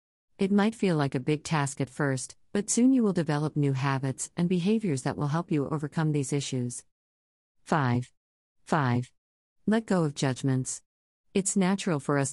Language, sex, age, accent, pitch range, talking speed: English, female, 40-59, American, 130-160 Hz, 170 wpm